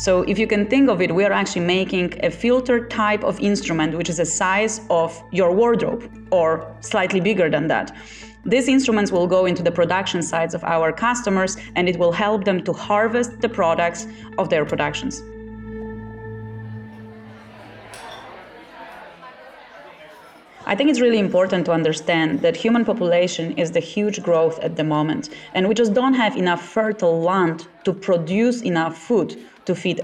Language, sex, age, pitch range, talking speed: English, female, 30-49, 165-220 Hz, 165 wpm